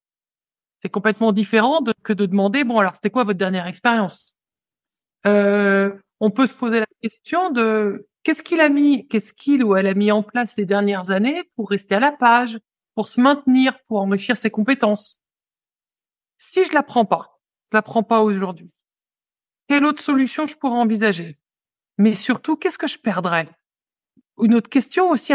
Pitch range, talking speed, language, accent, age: 200-270 Hz, 185 wpm, French, French, 50-69